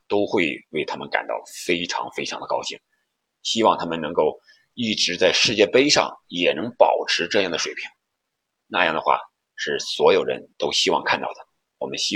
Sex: male